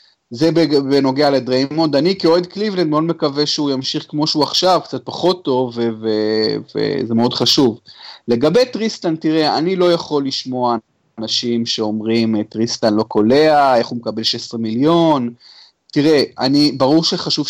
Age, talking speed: 30-49, 145 wpm